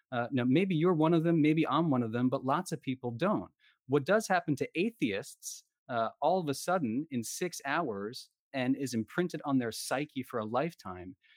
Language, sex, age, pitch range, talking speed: English, male, 30-49, 120-170 Hz, 205 wpm